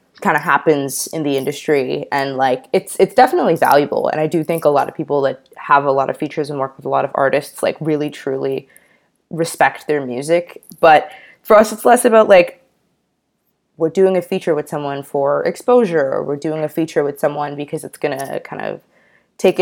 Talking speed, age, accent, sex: 205 wpm, 20-39, American, female